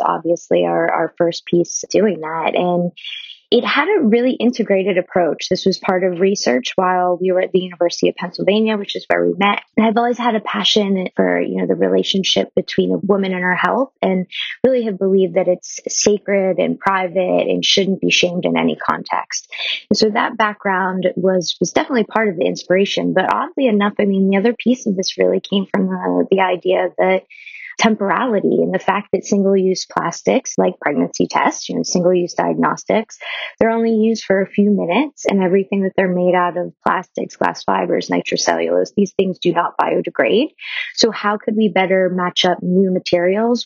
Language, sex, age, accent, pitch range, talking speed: English, female, 20-39, American, 175-210 Hz, 190 wpm